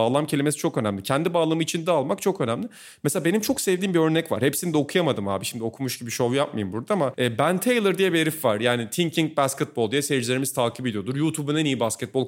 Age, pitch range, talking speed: 40-59, 130-185 Hz, 220 wpm